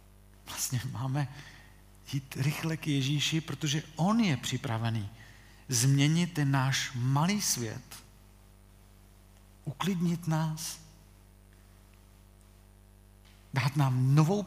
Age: 50-69